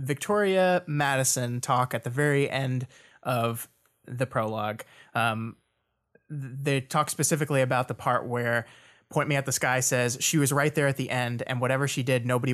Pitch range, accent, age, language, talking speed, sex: 125-150 Hz, American, 20-39, English, 170 wpm, male